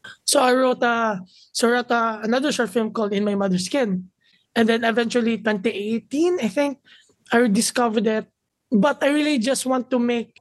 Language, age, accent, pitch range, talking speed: English, 20-39, Filipino, 205-235 Hz, 185 wpm